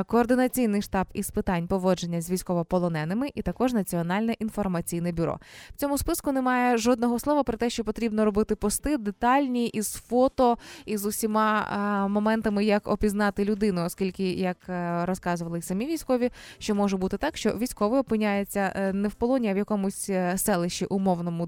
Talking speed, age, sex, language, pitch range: 155 wpm, 20-39, female, Ukrainian, 180-230 Hz